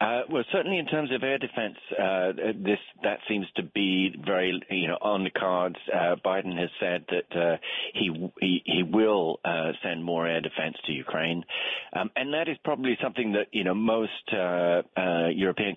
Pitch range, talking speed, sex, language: 85-100 Hz, 190 wpm, male, English